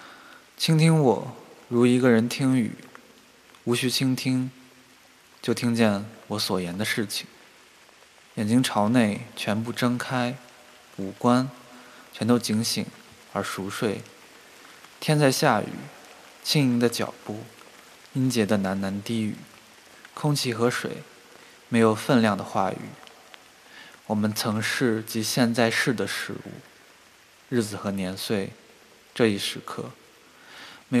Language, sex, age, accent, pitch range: Chinese, male, 20-39, native, 110-130 Hz